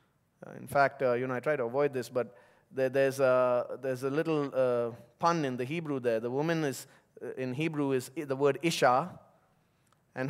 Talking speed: 185 wpm